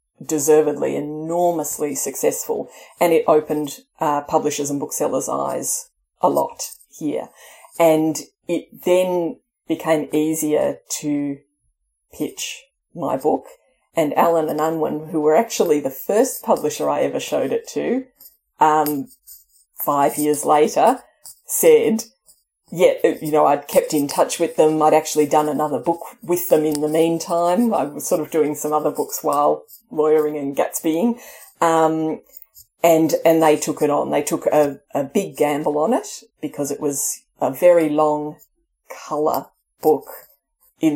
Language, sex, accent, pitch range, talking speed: English, female, Australian, 150-175 Hz, 145 wpm